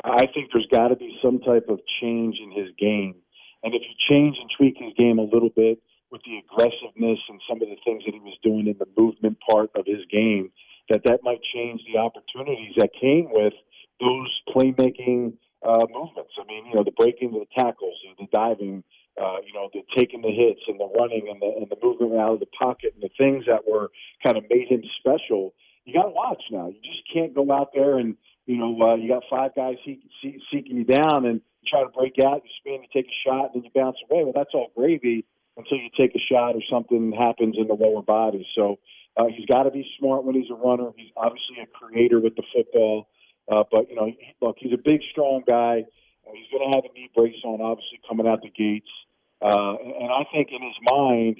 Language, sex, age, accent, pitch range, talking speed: English, male, 40-59, American, 110-130 Hz, 240 wpm